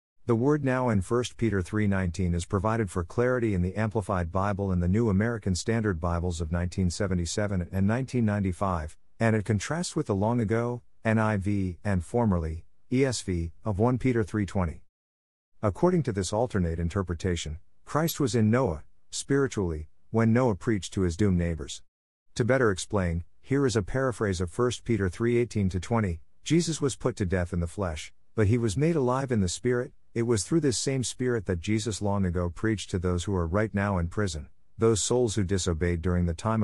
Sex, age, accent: male, 50-69, American